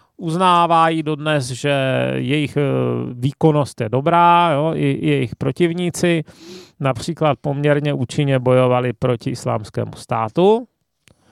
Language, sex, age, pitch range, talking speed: Czech, male, 30-49, 130-165 Hz, 90 wpm